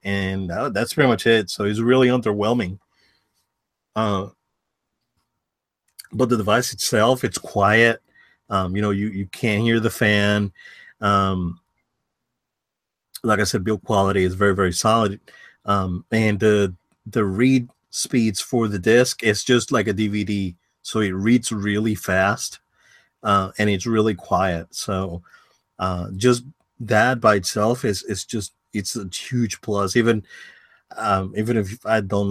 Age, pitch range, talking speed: 30-49, 100-115 Hz, 145 wpm